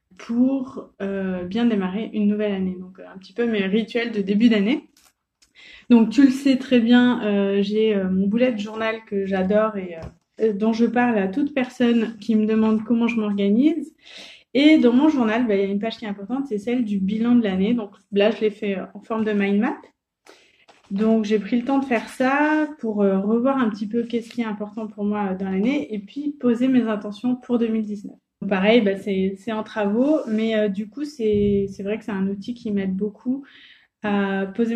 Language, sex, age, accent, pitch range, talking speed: French, female, 20-39, French, 205-240 Hz, 220 wpm